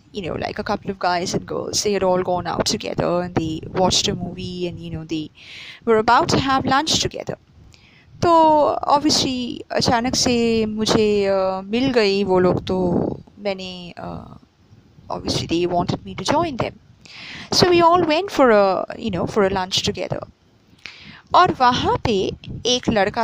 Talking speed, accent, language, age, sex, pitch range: 165 wpm, Indian, English, 20-39, female, 190-270 Hz